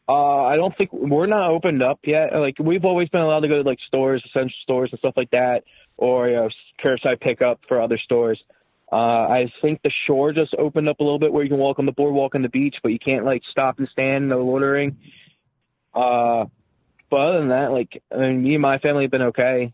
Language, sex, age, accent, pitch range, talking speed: English, male, 20-39, American, 115-140 Hz, 230 wpm